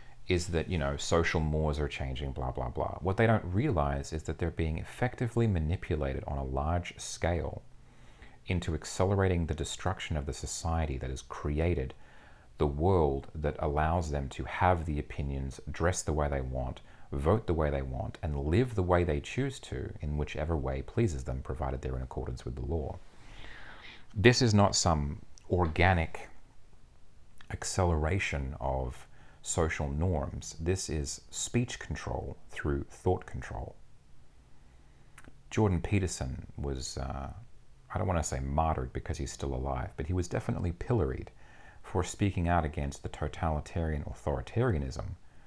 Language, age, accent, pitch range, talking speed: English, 30-49, Australian, 70-95 Hz, 150 wpm